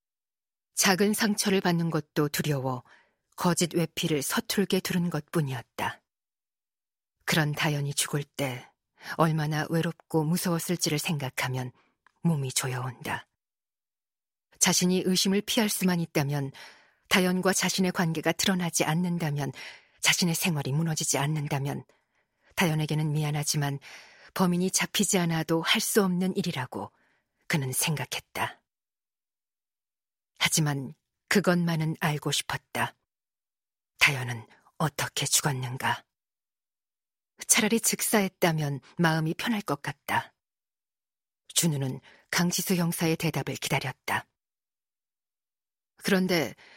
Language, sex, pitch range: Korean, female, 145-185 Hz